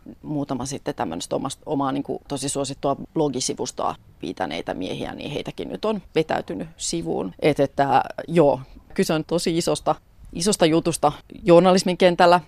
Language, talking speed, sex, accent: Finnish, 125 wpm, female, native